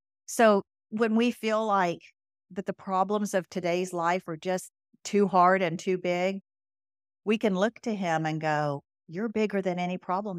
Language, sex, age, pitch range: English, female, 50-69, 170-225 Hz